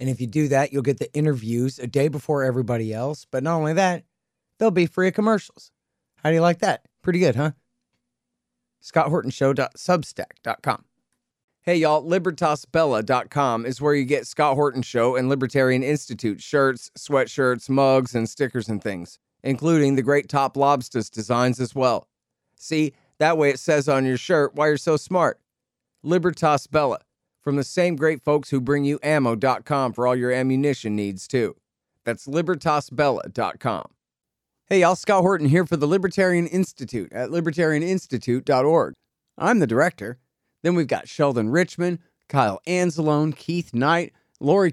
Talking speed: 155 wpm